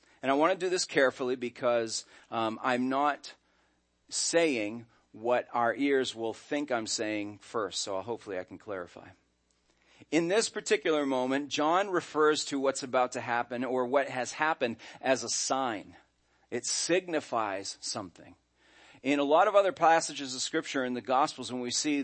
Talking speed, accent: 165 wpm, American